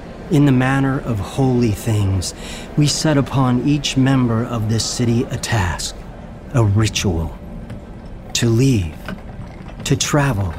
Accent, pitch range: American, 90-125 Hz